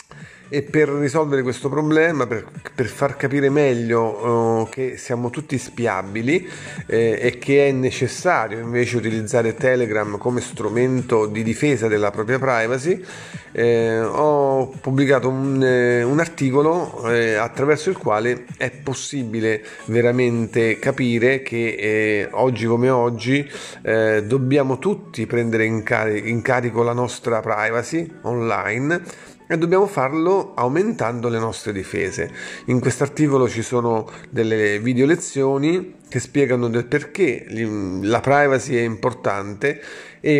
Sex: male